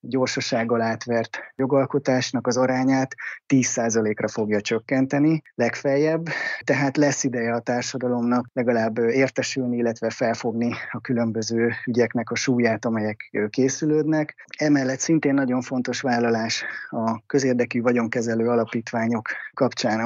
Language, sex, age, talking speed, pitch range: Hungarian, male, 20-39, 105 wpm, 115-135 Hz